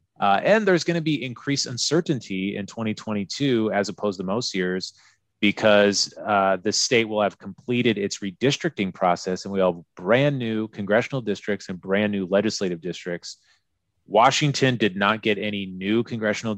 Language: English